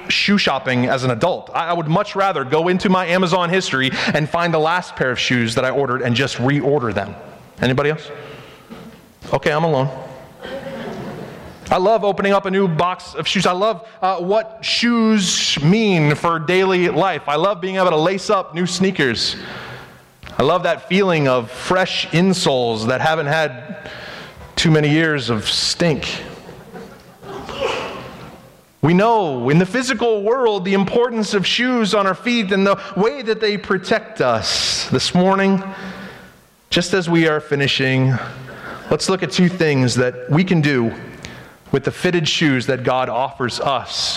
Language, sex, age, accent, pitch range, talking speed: English, male, 30-49, American, 135-195 Hz, 160 wpm